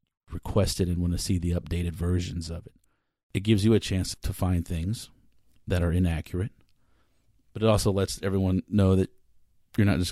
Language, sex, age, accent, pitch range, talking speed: English, male, 40-59, American, 85-100 Hz, 185 wpm